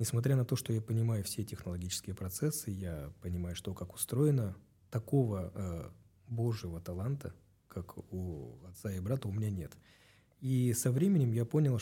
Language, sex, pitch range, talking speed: Russian, male, 100-125 Hz, 155 wpm